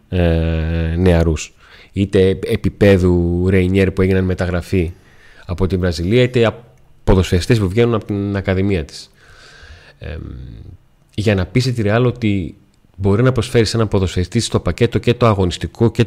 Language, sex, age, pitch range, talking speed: Greek, male, 30-49, 90-115 Hz, 130 wpm